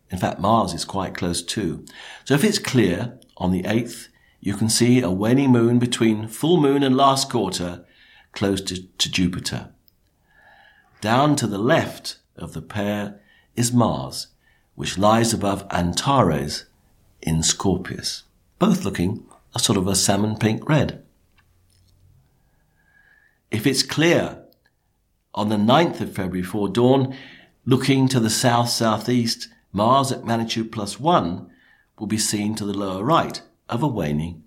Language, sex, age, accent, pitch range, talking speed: English, male, 50-69, British, 95-125 Hz, 145 wpm